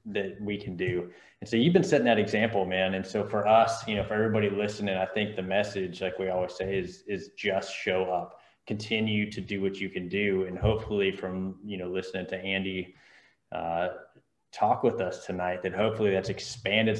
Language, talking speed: English, 205 wpm